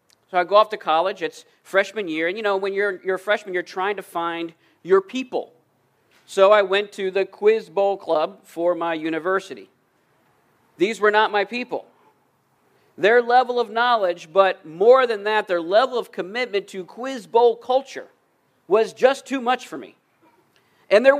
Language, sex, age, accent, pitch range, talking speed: English, male, 50-69, American, 185-245 Hz, 180 wpm